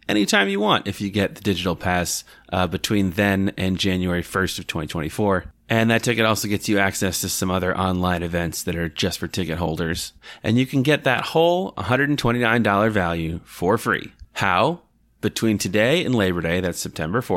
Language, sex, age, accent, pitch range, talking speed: English, male, 30-49, American, 90-115 Hz, 185 wpm